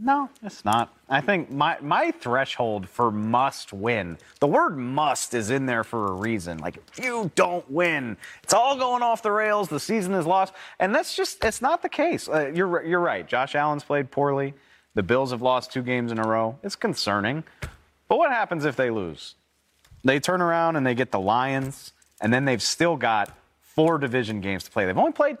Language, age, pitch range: English, 30-49, 120-180 Hz